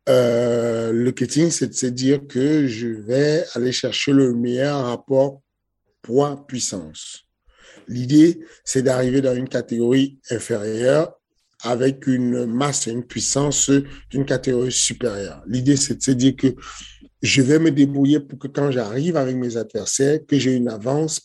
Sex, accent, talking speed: male, French, 150 wpm